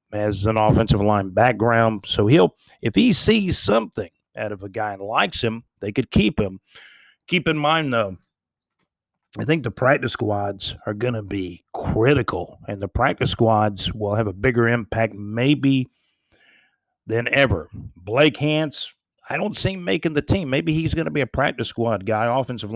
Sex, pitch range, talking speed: male, 105-140 Hz, 175 wpm